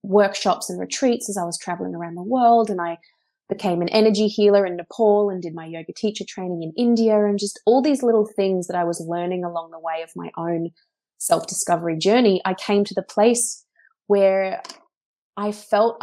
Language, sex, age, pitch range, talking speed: English, female, 20-39, 175-210 Hz, 200 wpm